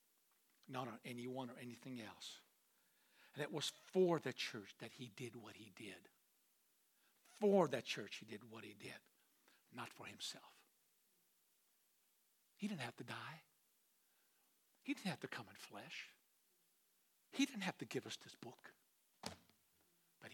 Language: English